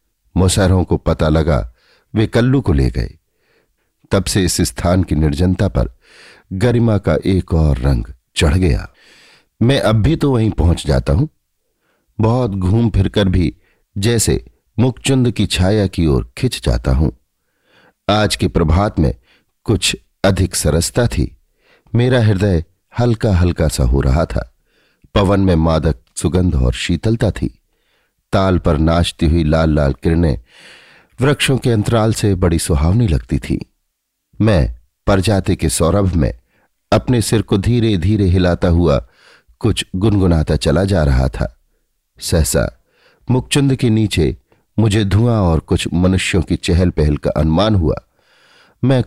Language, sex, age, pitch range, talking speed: Hindi, male, 50-69, 80-110 Hz, 140 wpm